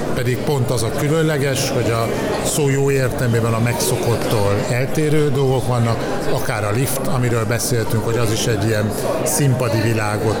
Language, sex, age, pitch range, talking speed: Hungarian, male, 50-69, 110-135 Hz, 155 wpm